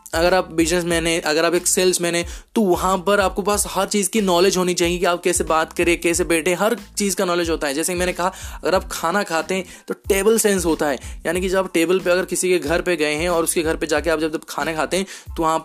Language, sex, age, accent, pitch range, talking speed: Hindi, male, 20-39, native, 160-190 Hz, 280 wpm